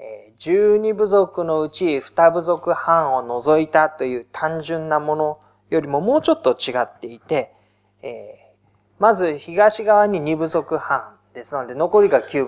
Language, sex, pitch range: Japanese, male, 140-215 Hz